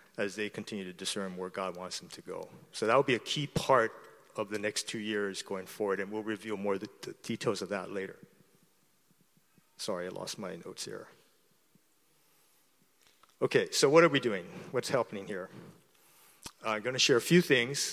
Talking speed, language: 195 wpm, English